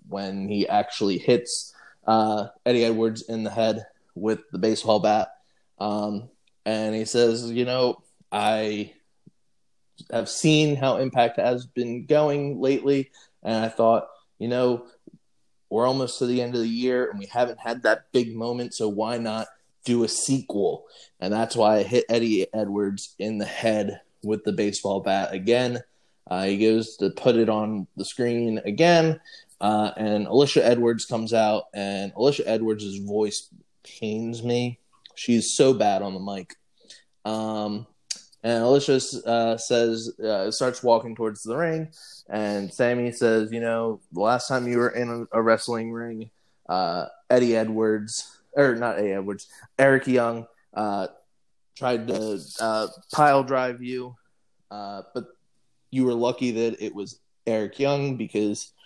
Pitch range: 105-125 Hz